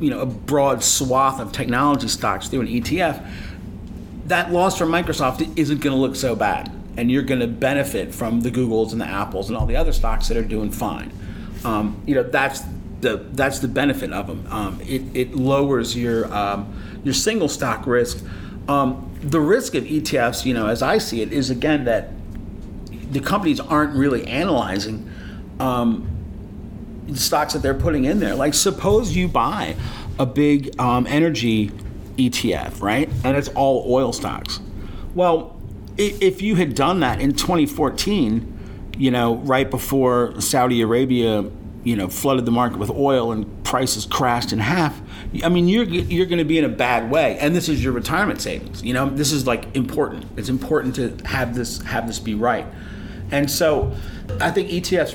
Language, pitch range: English, 105-140 Hz